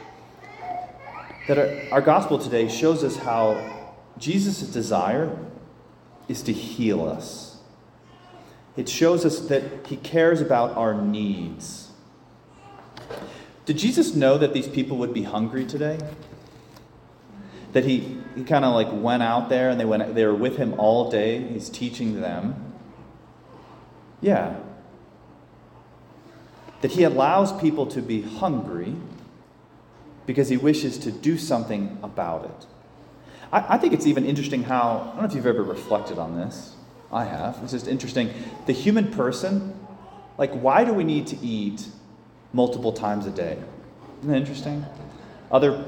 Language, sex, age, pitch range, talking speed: English, male, 30-49, 115-155 Hz, 140 wpm